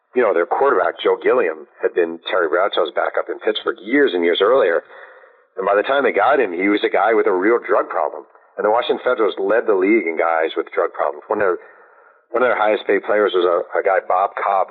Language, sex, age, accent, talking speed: English, male, 50-69, American, 235 wpm